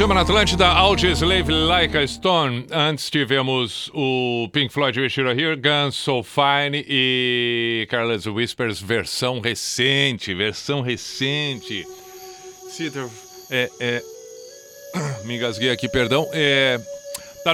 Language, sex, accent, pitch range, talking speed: Portuguese, male, Brazilian, 110-140 Hz, 120 wpm